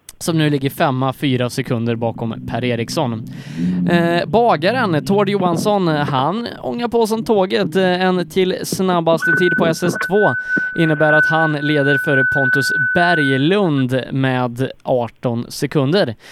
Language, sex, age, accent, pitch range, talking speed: Swedish, male, 20-39, native, 140-190 Hz, 120 wpm